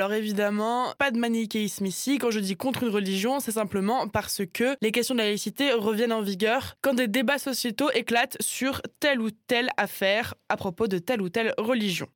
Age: 20-39